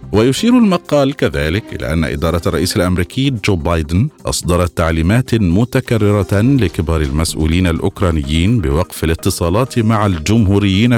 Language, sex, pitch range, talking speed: Arabic, male, 85-115 Hz, 110 wpm